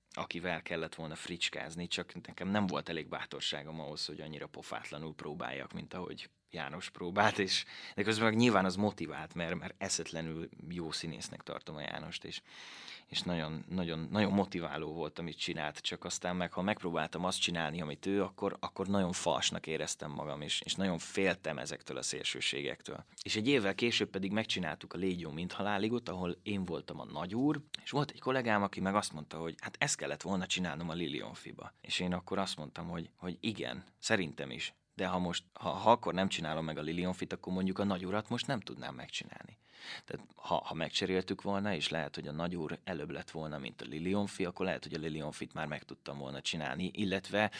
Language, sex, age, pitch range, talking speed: Hungarian, male, 20-39, 80-100 Hz, 195 wpm